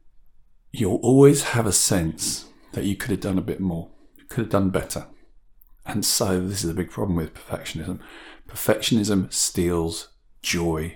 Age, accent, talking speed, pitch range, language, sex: 50-69, British, 160 wpm, 90-115 Hz, English, male